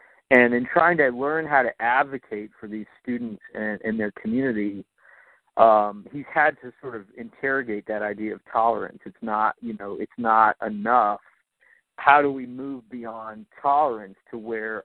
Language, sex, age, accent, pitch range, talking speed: English, male, 50-69, American, 105-140 Hz, 165 wpm